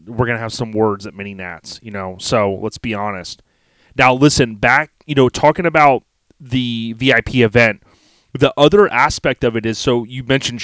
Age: 30-49